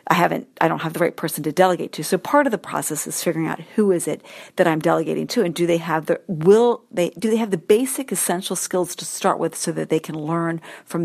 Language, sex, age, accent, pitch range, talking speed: English, female, 50-69, American, 165-205 Hz, 265 wpm